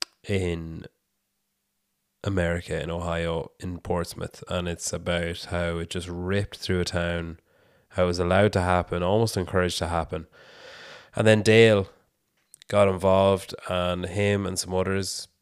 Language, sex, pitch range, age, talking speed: English, male, 90-100 Hz, 20-39, 140 wpm